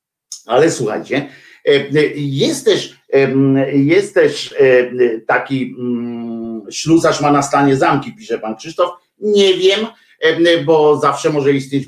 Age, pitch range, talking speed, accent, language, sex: 50-69, 125-210 Hz, 100 wpm, native, Polish, male